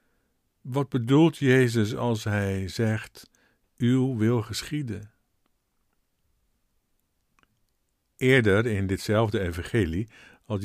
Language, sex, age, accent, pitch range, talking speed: Dutch, male, 50-69, Dutch, 105-140 Hz, 80 wpm